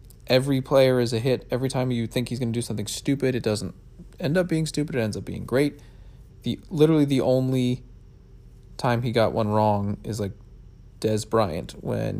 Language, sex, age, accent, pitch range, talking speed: English, male, 30-49, American, 115-140 Hz, 195 wpm